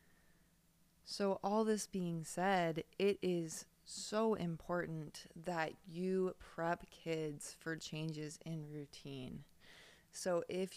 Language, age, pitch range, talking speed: English, 20-39, 160-190 Hz, 105 wpm